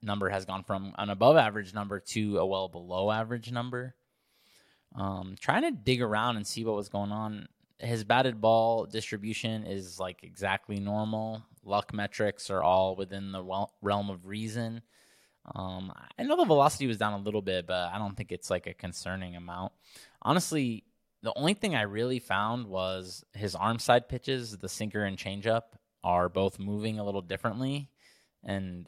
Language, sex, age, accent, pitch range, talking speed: English, male, 20-39, American, 95-120 Hz, 175 wpm